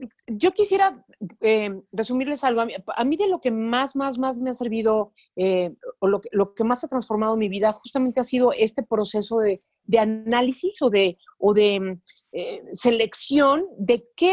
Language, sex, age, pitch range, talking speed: Spanish, female, 40-59, 200-255 Hz, 185 wpm